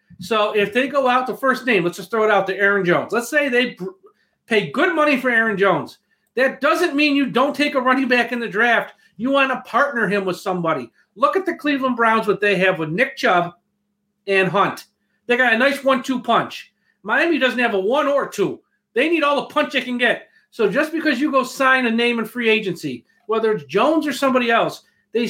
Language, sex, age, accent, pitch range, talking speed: English, male, 40-59, American, 200-255 Hz, 230 wpm